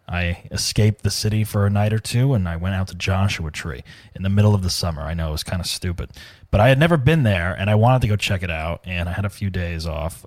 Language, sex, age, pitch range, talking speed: English, male, 30-49, 95-125 Hz, 290 wpm